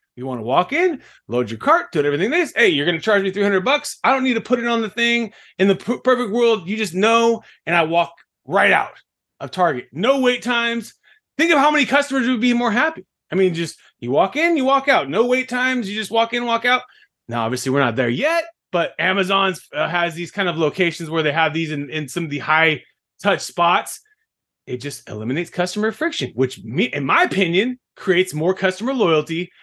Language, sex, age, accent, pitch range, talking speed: English, male, 30-49, American, 175-250 Hz, 225 wpm